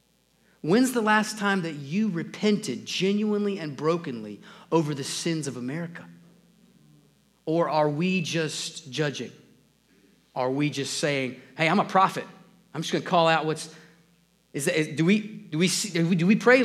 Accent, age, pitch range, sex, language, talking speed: American, 30-49, 150-195 Hz, male, English, 135 wpm